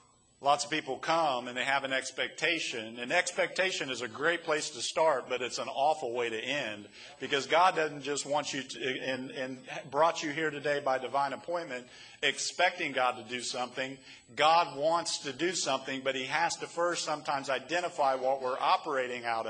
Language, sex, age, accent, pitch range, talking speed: English, male, 50-69, American, 130-155 Hz, 185 wpm